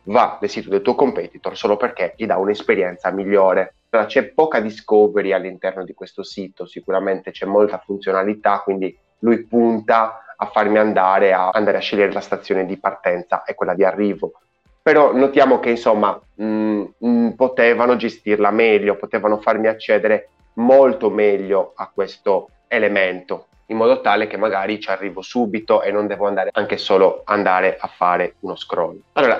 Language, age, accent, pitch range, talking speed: Italian, 30-49, native, 100-125 Hz, 160 wpm